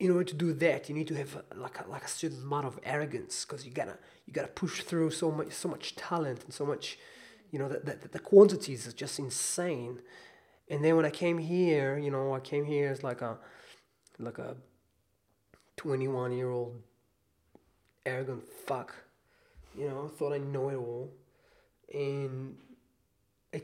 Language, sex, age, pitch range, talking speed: English, male, 20-39, 135-170 Hz, 190 wpm